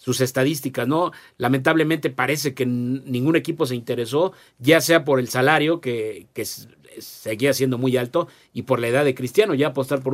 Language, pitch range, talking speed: Spanish, 125-145 Hz, 180 wpm